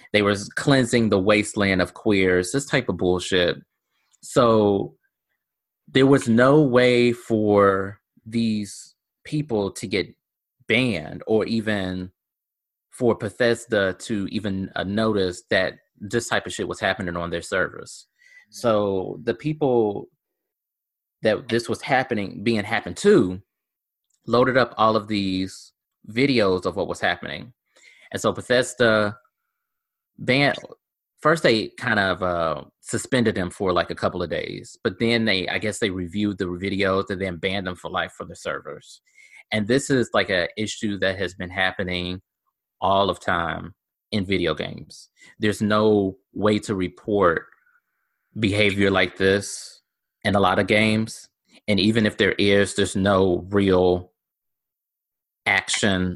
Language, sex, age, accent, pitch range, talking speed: English, male, 20-39, American, 95-115 Hz, 140 wpm